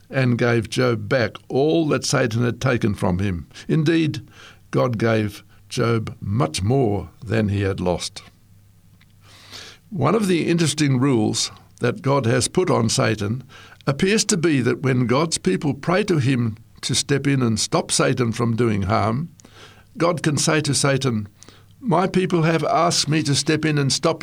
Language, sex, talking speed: English, male, 165 wpm